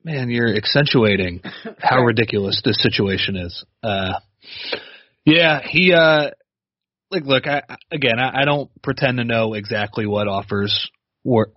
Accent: American